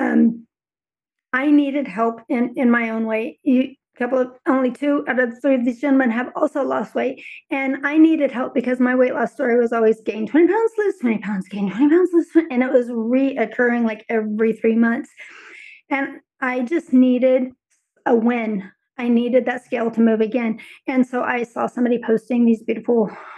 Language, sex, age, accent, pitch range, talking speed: English, female, 40-59, American, 225-275 Hz, 195 wpm